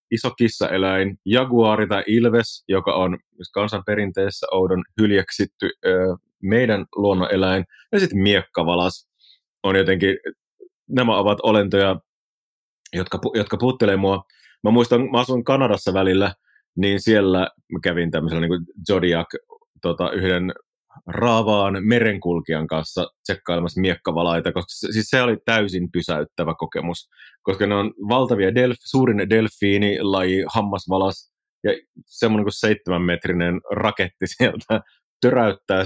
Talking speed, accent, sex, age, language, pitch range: 115 wpm, native, male, 30-49, Finnish, 95-120 Hz